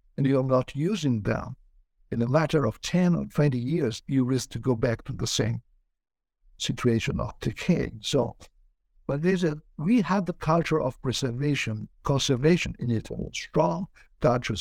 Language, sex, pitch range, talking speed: English, male, 115-145 Hz, 160 wpm